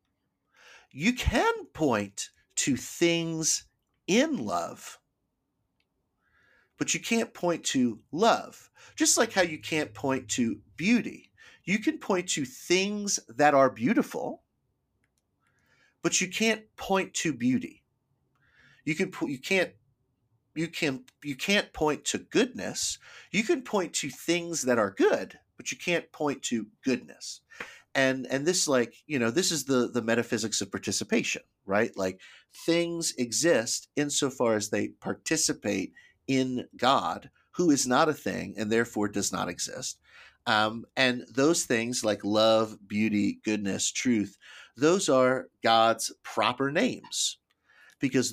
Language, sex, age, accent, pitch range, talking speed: English, male, 40-59, American, 115-170 Hz, 135 wpm